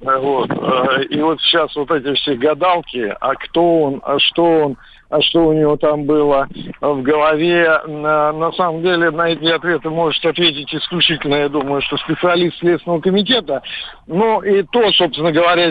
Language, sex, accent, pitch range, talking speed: Russian, male, native, 145-180 Hz, 160 wpm